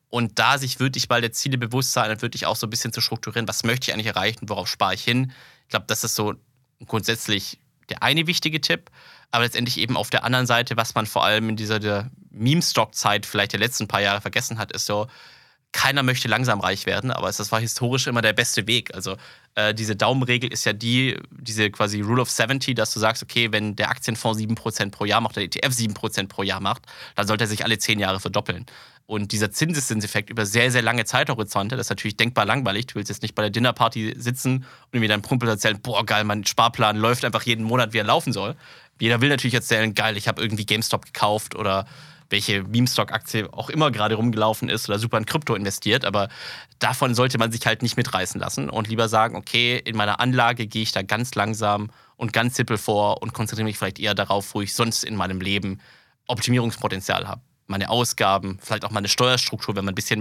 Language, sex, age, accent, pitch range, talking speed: German, male, 20-39, German, 105-120 Hz, 220 wpm